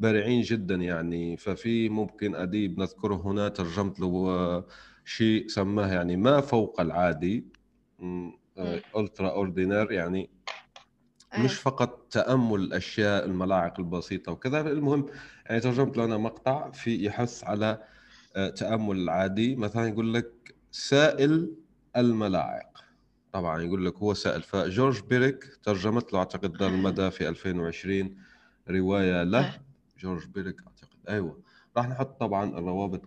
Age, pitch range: 30-49, 90-120 Hz